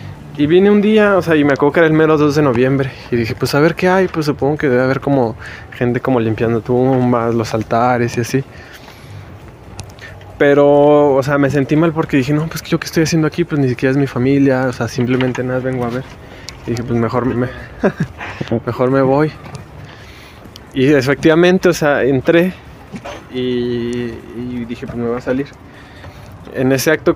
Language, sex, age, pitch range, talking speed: Spanish, male, 20-39, 120-145 Hz, 195 wpm